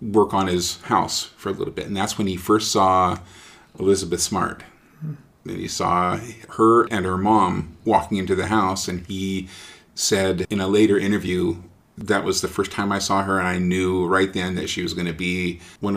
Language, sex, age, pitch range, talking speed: English, male, 40-59, 95-105 Hz, 205 wpm